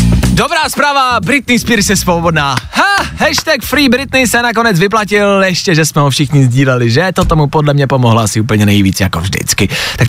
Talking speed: 185 wpm